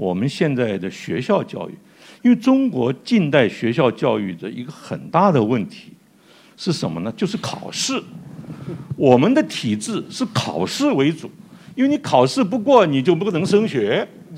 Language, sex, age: Chinese, male, 60-79